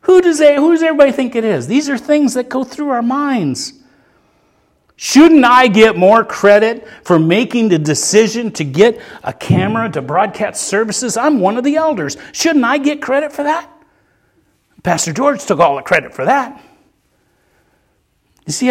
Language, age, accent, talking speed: English, 50-69, American, 165 wpm